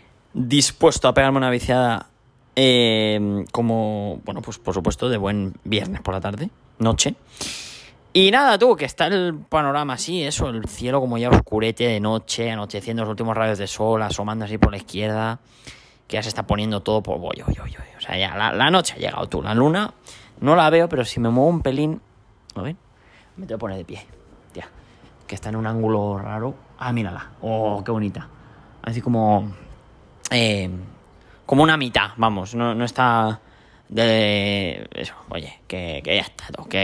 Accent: Spanish